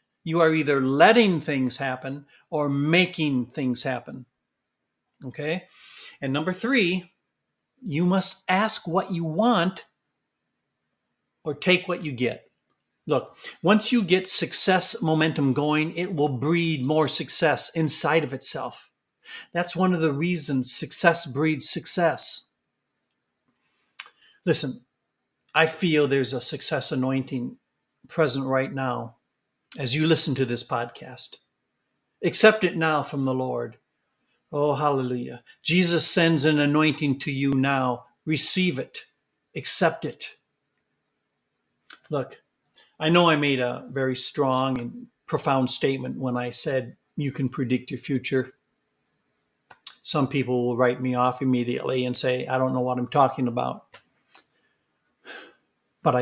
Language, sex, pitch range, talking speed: English, male, 130-165 Hz, 125 wpm